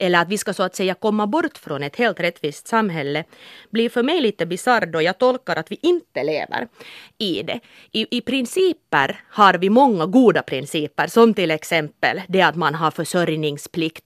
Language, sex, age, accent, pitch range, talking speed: Finnish, female, 30-49, native, 160-230 Hz, 190 wpm